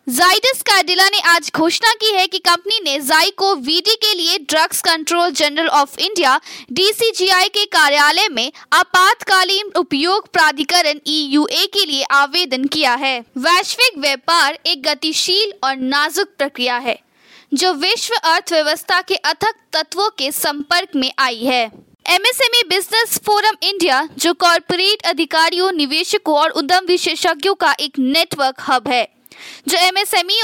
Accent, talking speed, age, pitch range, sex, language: native, 135 wpm, 20-39, 285-375 Hz, female, Hindi